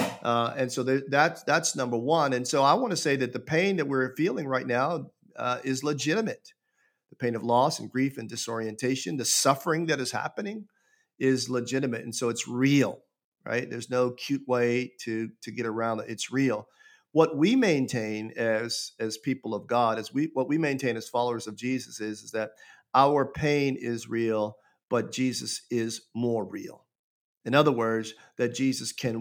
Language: English